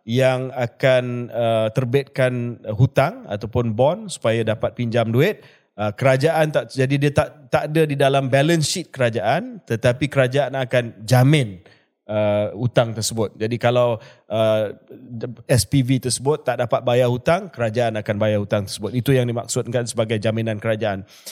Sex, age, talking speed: male, 30-49, 145 wpm